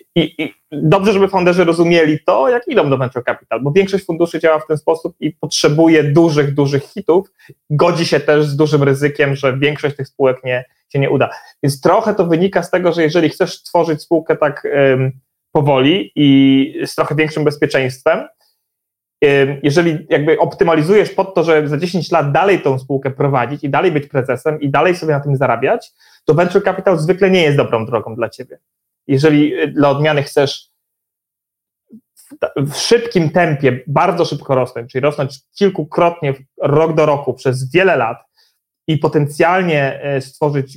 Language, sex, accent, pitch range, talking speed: Polish, male, native, 135-165 Hz, 165 wpm